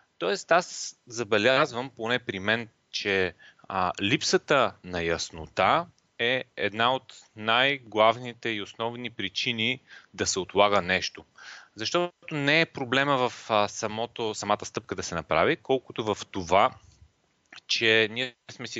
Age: 30-49